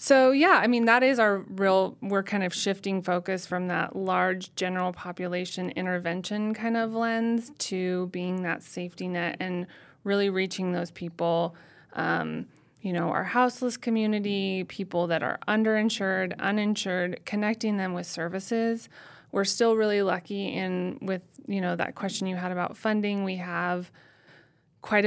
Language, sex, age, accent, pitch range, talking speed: English, female, 20-39, American, 180-210 Hz, 155 wpm